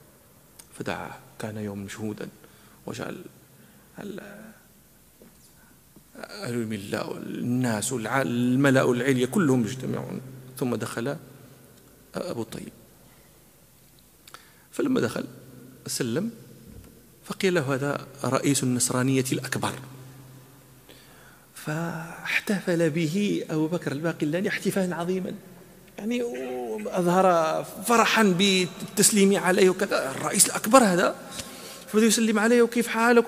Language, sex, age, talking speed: Arabic, male, 40-59, 85 wpm